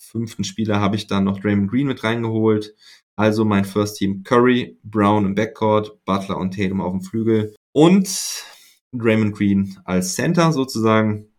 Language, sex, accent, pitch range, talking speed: German, male, German, 100-125 Hz, 160 wpm